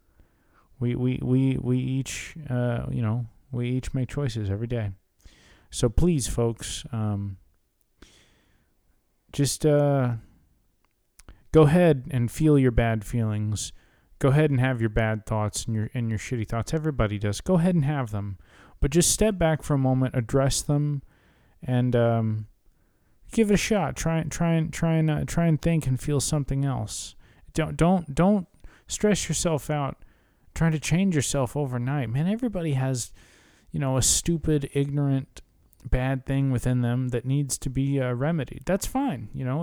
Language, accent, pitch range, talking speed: English, American, 115-155 Hz, 165 wpm